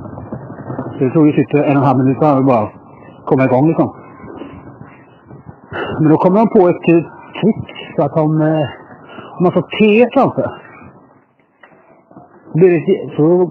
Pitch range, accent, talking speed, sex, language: 130-175 Hz, Norwegian, 140 wpm, male, Swedish